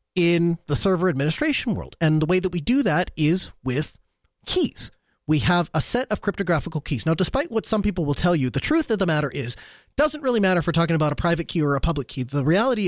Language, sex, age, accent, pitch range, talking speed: English, male, 30-49, American, 155-215 Hz, 240 wpm